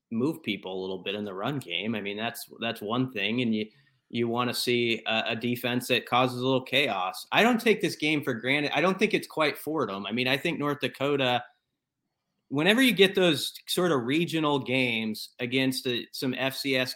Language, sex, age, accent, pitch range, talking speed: English, male, 30-49, American, 115-135 Hz, 215 wpm